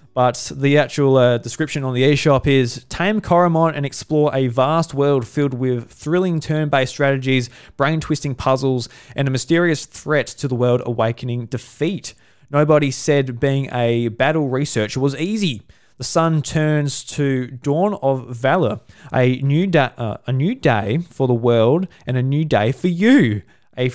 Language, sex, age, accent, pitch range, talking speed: English, male, 20-39, Australian, 120-145 Hz, 165 wpm